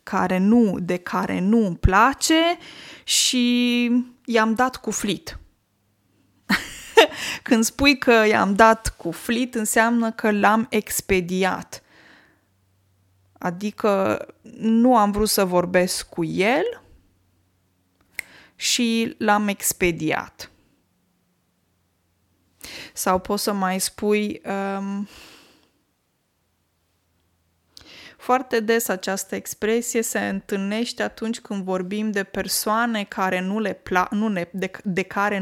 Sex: female